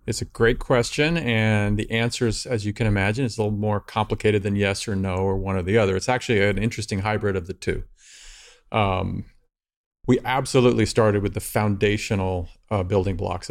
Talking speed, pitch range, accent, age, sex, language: 195 wpm, 100-120 Hz, American, 40-59, male, English